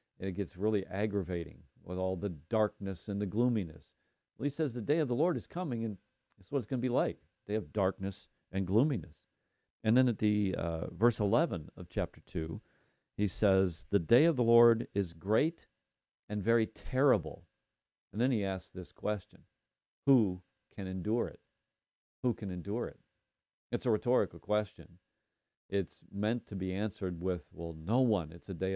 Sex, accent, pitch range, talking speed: male, American, 95-115 Hz, 180 wpm